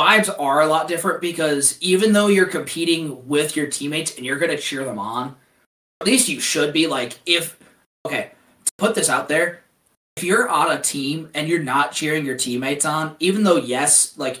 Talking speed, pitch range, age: 205 wpm, 125-155 Hz, 20-39